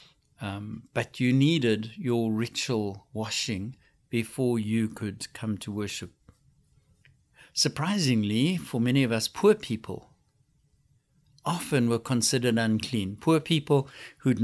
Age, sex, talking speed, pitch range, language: 60-79, male, 110 wpm, 115-140 Hz, English